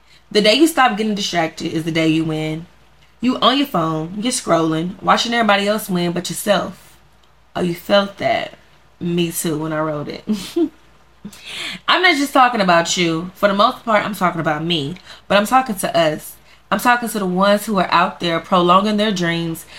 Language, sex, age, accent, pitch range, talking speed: English, female, 20-39, American, 165-215 Hz, 195 wpm